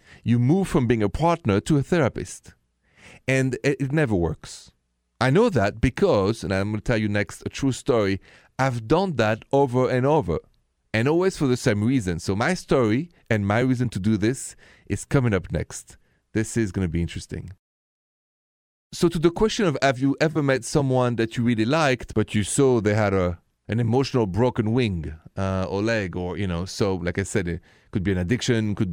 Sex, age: male, 30-49